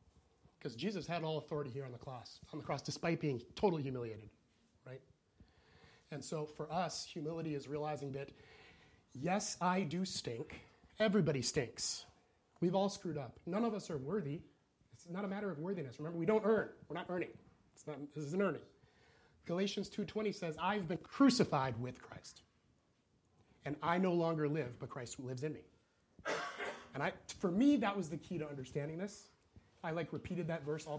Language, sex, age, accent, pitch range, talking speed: English, male, 30-49, American, 140-195 Hz, 180 wpm